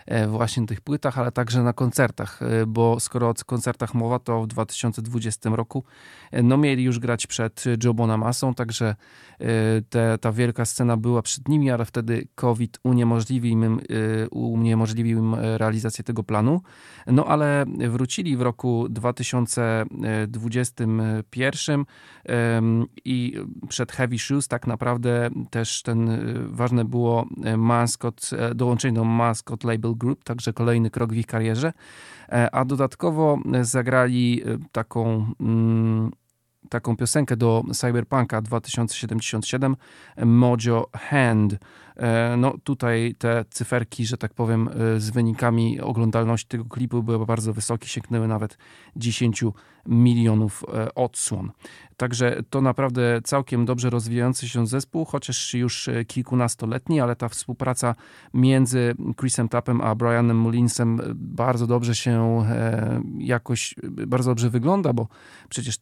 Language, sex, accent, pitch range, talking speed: Polish, male, native, 115-125 Hz, 120 wpm